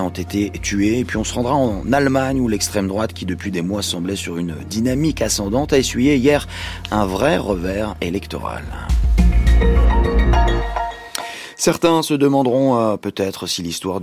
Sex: male